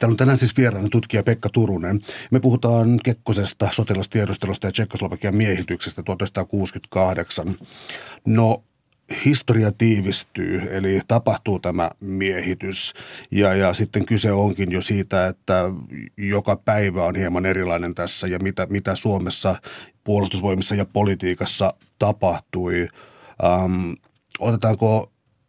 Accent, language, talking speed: native, Finnish, 110 wpm